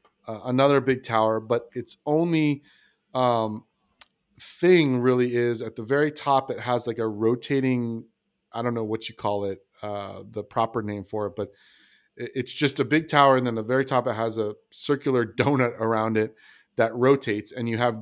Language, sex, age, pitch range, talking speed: English, male, 30-49, 110-130 Hz, 195 wpm